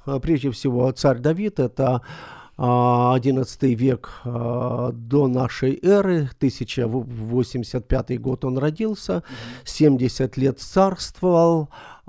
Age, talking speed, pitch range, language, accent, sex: 50-69, 85 wpm, 125-140 Hz, Ukrainian, native, male